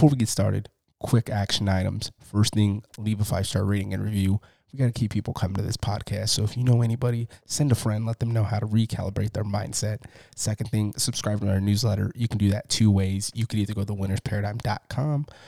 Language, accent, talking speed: English, American, 225 wpm